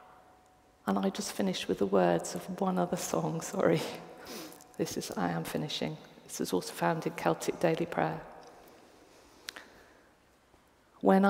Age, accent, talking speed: 50-69, British, 140 wpm